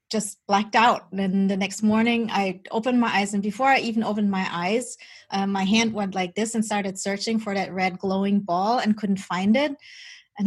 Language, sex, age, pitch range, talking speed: English, female, 20-39, 185-220 Hz, 210 wpm